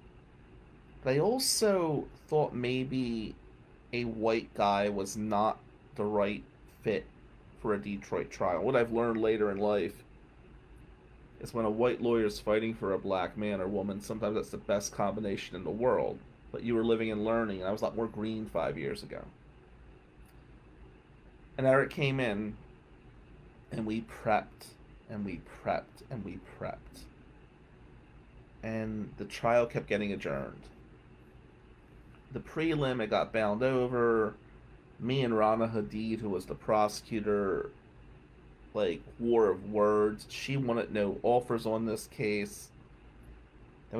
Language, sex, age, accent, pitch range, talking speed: English, male, 30-49, American, 100-120 Hz, 145 wpm